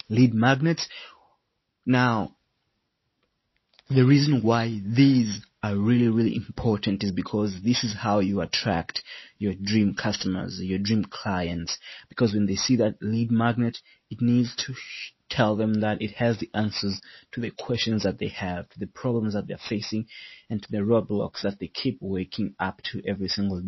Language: English